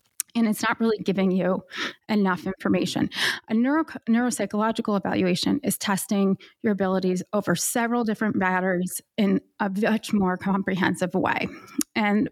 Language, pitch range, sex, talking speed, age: English, 190-220 Hz, female, 130 wpm, 30-49